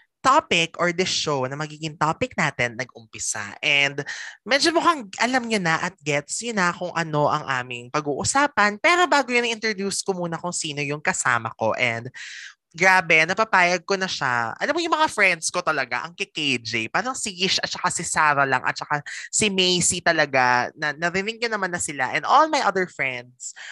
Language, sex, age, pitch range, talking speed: Filipino, male, 20-39, 145-215 Hz, 180 wpm